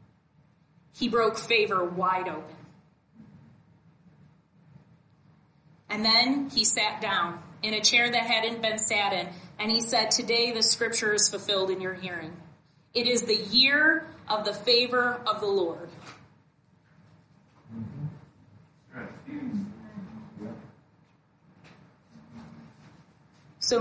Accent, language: American, English